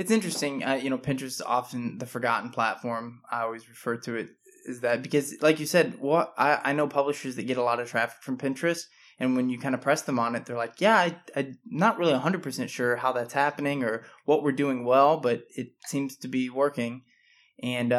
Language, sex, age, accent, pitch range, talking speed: English, male, 20-39, American, 120-145 Hz, 225 wpm